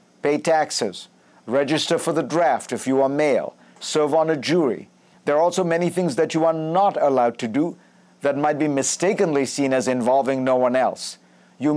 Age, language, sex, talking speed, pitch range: 50-69, English, male, 190 wpm, 130-155 Hz